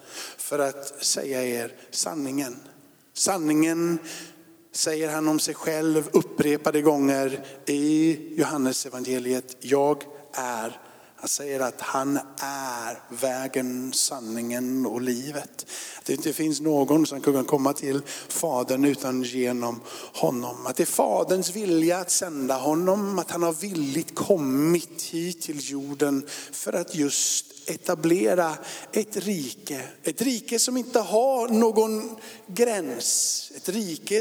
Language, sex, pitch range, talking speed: Swedish, male, 140-200 Hz, 125 wpm